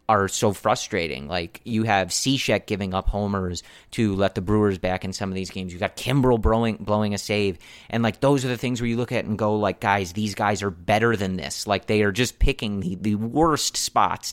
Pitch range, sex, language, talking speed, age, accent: 100-125 Hz, male, English, 235 wpm, 30-49, American